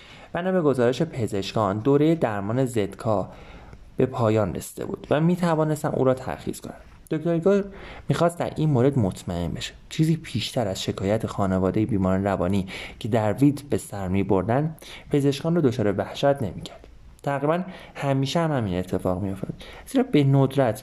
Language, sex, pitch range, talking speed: Persian, male, 100-140 Hz, 155 wpm